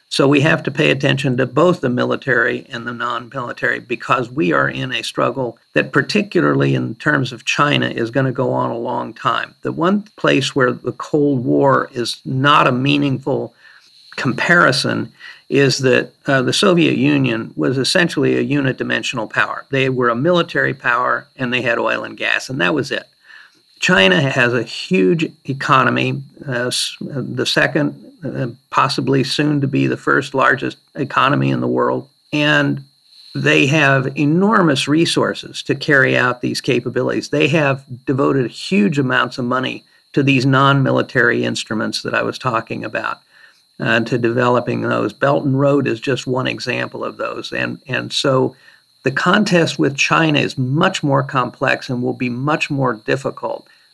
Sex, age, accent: male, 50-69, American